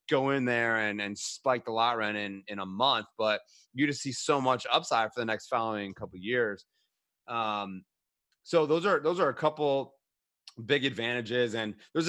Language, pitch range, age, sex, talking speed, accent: English, 115-145 Hz, 30-49, male, 195 wpm, American